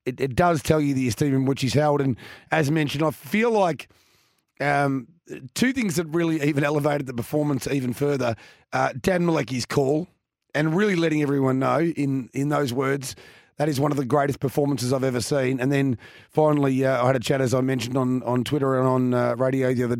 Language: English